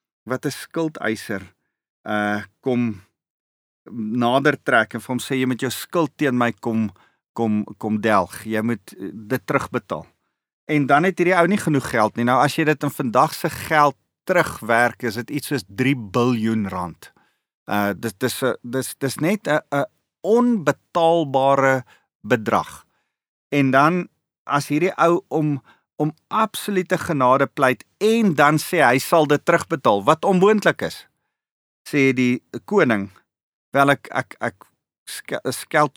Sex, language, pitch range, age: male, English, 120-165 Hz, 40-59